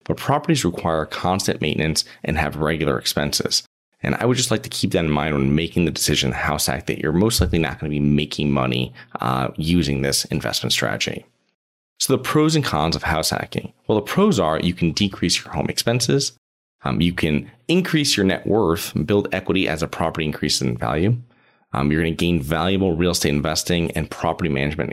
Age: 30-49